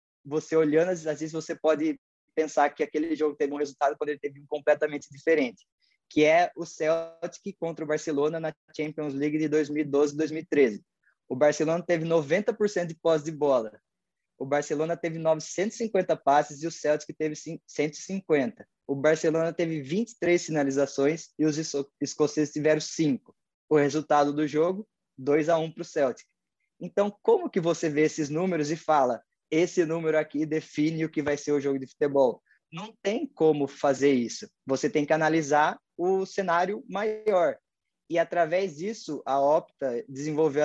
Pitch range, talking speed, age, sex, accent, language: 150-170 Hz, 165 wpm, 20-39, male, Brazilian, Portuguese